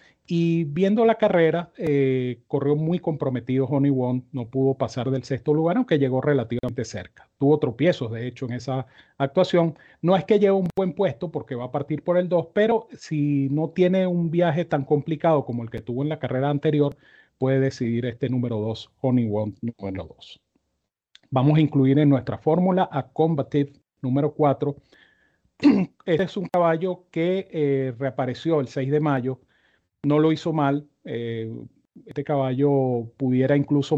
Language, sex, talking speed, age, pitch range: Spanish, male, 170 wpm, 40-59, 130-155 Hz